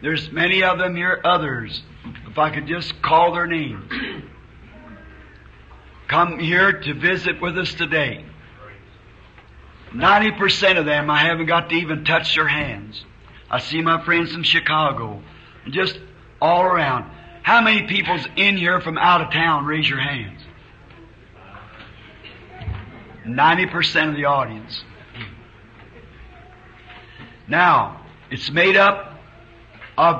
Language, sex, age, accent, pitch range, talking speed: English, male, 50-69, American, 115-170 Hz, 120 wpm